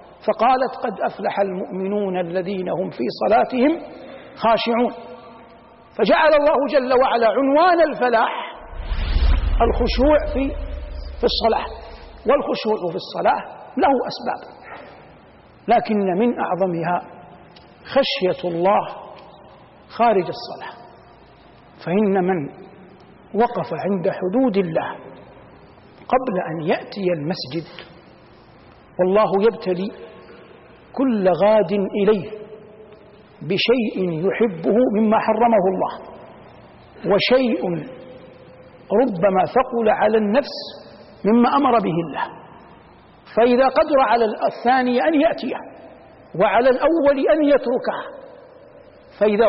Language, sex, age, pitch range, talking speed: Arabic, male, 50-69, 190-250 Hz, 85 wpm